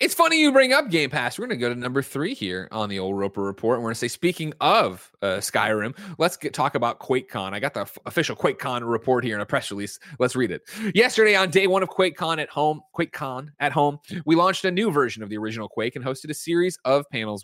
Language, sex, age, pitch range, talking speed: English, male, 30-49, 115-170 Hz, 260 wpm